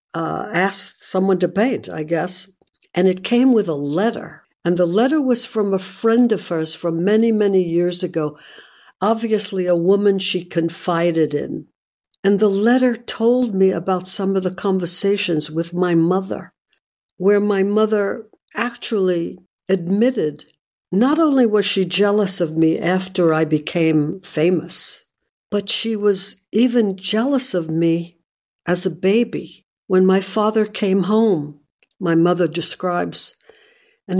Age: 60-79